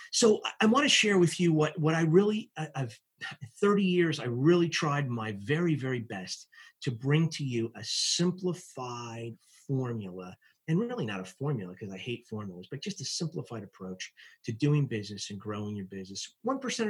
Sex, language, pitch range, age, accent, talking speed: male, English, 120-180 Hz, 30-49, American, 180 wpm